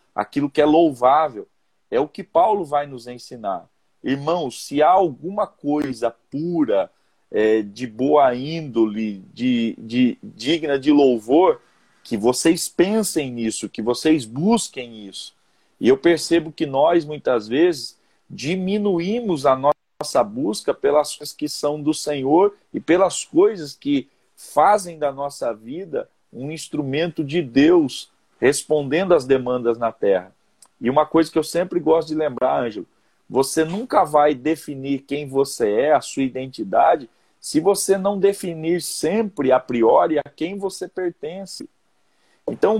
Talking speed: 135 wpm